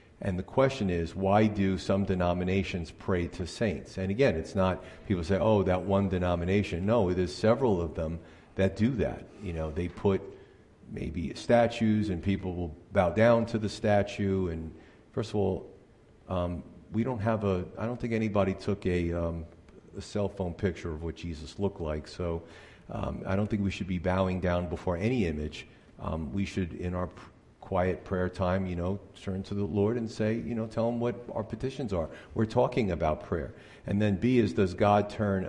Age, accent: 40-59, American